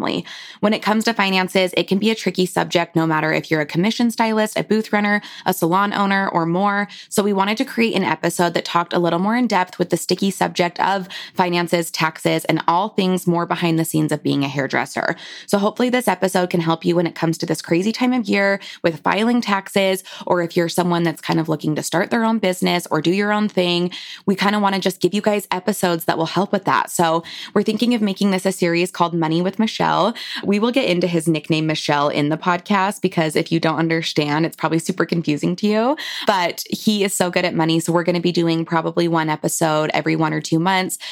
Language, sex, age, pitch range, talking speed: English, female, 20-39, 165-205 Hz, 240 wpm